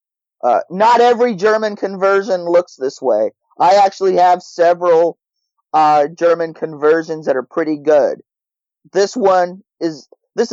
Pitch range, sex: 145-195 Hz, male